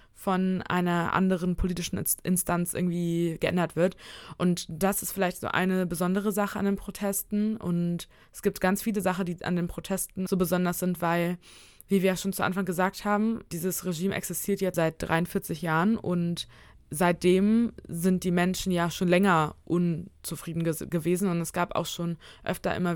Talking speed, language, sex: 165 wpm, German, female